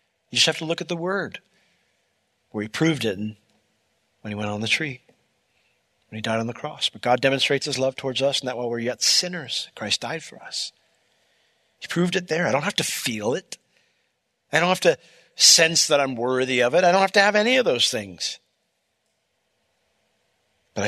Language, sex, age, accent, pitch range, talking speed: English, male, 40-59, American, 115-165 Hz, 205 wpm